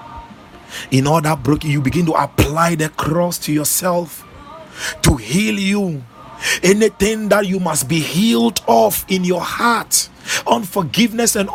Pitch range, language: 150-210 Hz, English